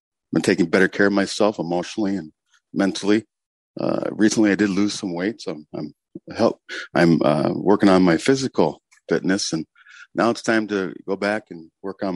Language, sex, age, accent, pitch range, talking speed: English, male, 50-69, American, 90-110 Hz, 190 wpm